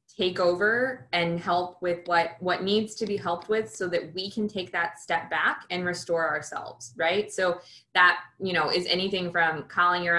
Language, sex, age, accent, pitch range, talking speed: English, female, 20-39, American, 160-185 Hz, 195 wpm